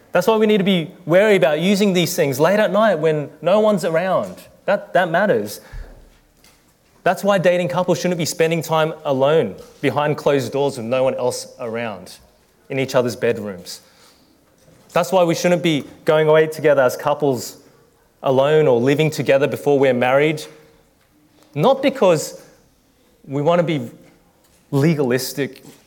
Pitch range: 120-155 Hz